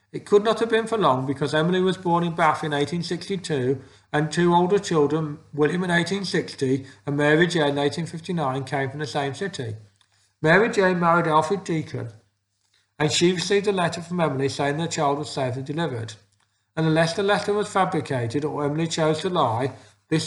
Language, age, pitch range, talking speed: English, 50-69, 130-170 Hz, 185 wpm